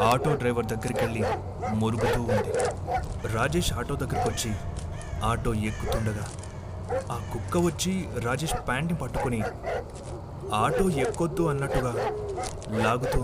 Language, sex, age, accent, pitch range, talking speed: Telugu, male, 30-49, native, 95-120 Hz, 100 wpm